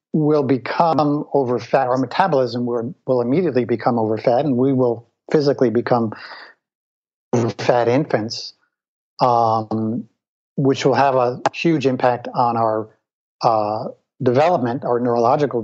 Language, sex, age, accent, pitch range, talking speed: English, male, 50-69, American, 125-150 Hz, 125 wpm